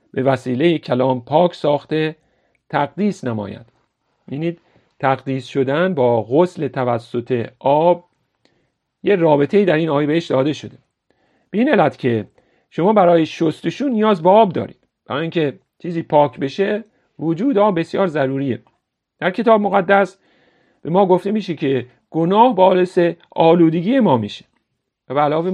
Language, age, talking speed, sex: Persian, 50-69, 130 wpm, male